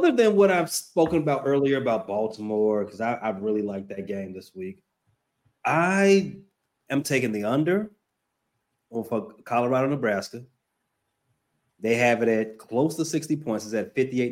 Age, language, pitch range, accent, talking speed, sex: 30-49, English, 110-150 Hz, American, 155 wpm, male